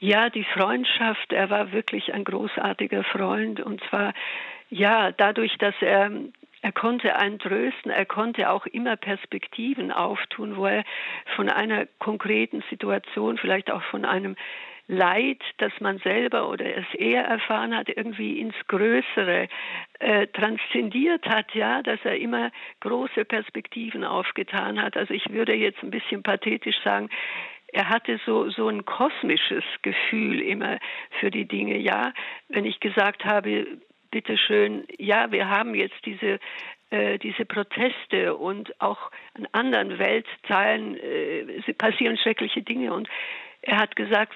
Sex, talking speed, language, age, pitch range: female, 140 wpm, German, 50-69, 205-260 Hz